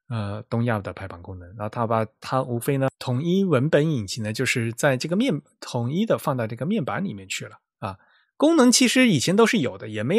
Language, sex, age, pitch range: Chinese, male, 20-39, 110-170 Hz